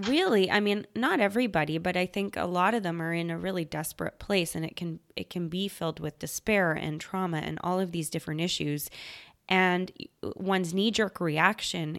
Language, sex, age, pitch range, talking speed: English, female, 20-39, 160-190 Hz, 200 wpm